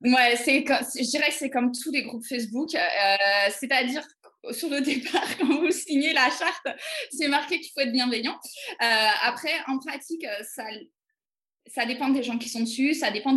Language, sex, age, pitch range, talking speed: French, female, 20-39, 220-290 Hz, 185 wpm